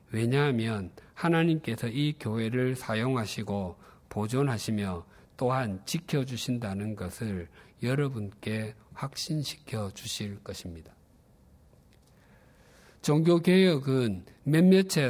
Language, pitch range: Korean, 110-165 Hz